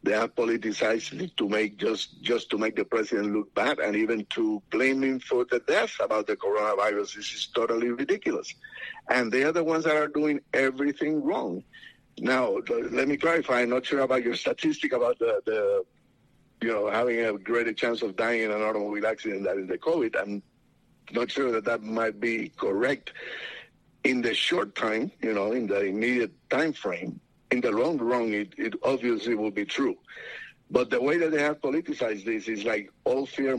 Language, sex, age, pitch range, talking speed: English, male, 60-79, 110-145 Hz, 195 wpm